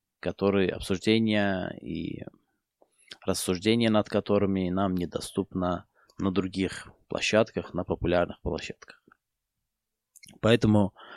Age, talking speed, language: 20-39, 80 wpm, Russian